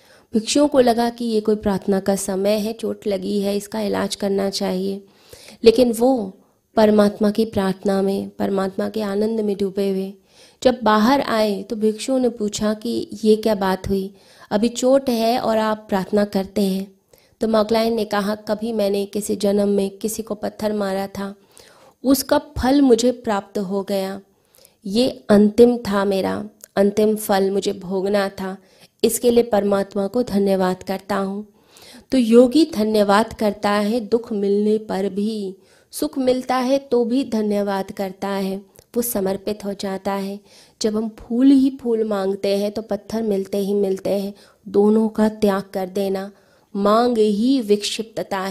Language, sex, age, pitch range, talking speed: Hindi, female, 20-39, 195-225 Hz, 160 wpm